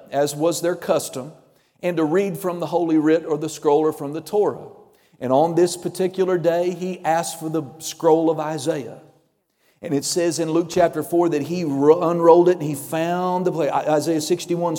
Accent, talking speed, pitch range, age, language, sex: American, 195 wpm, 155-190 Hz, 40-59, English, male